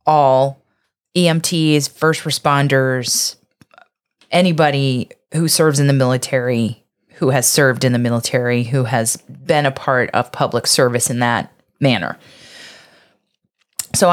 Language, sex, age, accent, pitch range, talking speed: English, female, 20-39, American, 135-185 Hz, 120 wpm